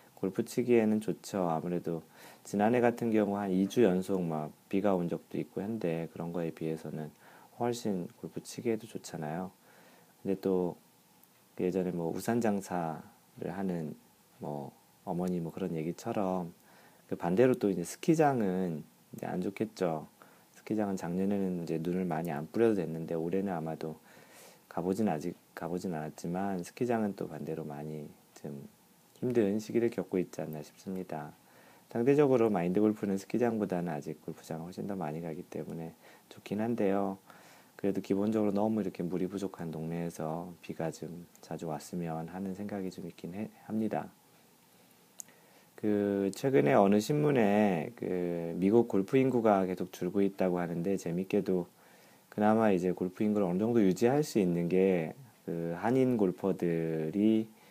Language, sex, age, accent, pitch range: Korean, male, 40-59, native, 85-105 Hz